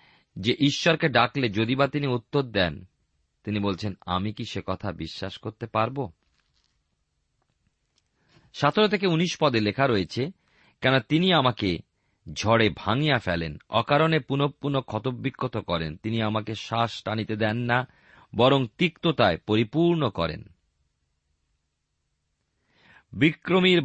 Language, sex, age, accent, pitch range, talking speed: Bengali, male, 40-59, native, 95-140 Hz, 115 wpm